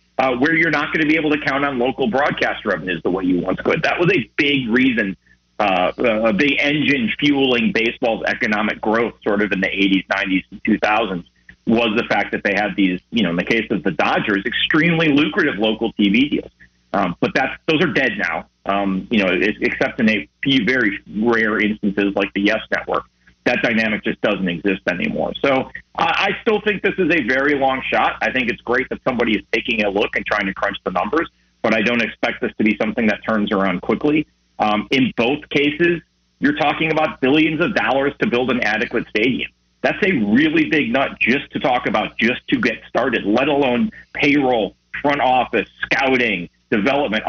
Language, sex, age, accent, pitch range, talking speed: English, male, 40-59, American, 95-145 Hz, 205 wpm